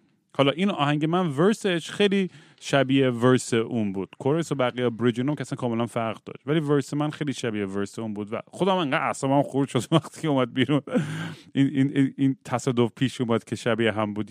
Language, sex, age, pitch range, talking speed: Persian, male, 30-49, 120-160 Hz, 195 wpm